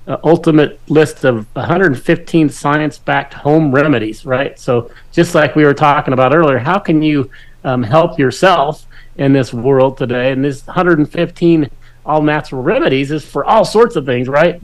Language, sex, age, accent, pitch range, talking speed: English, male, 40-59, American, 125-150 Hz, 160 wpm